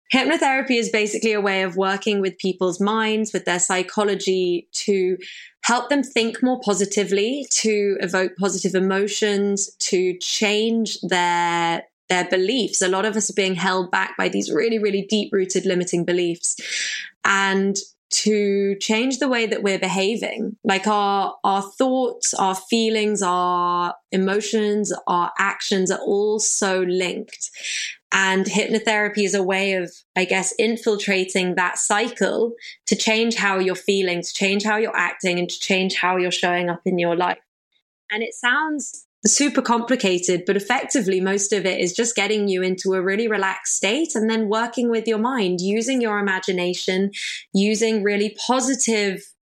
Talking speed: 155 wpm